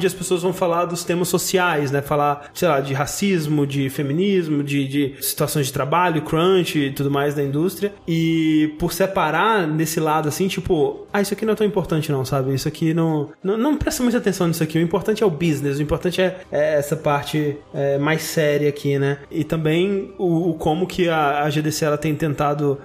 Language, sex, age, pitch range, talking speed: Portuguese, male, 20-39, 145-180 Hz, 210 wpm